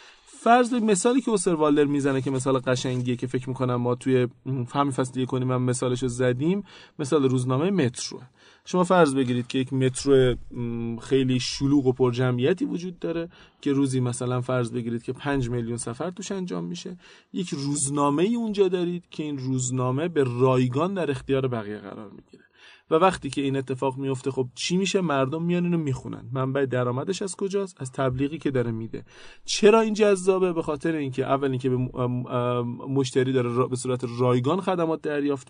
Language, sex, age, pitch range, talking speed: Persian, male, 30-49, 130-165 Hz, 170 wpm